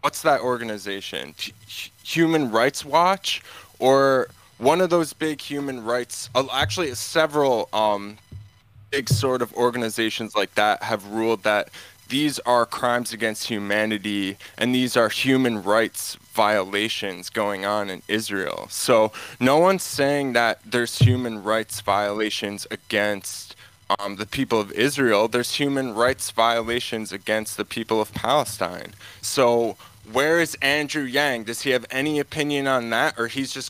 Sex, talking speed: male, 140 wpm